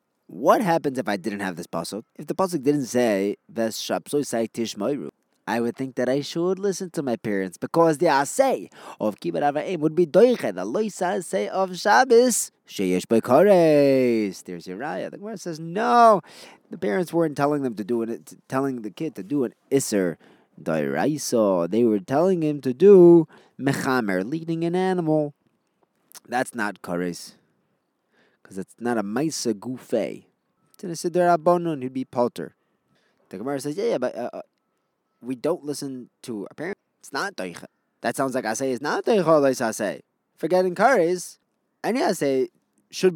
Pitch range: 115-170 Hz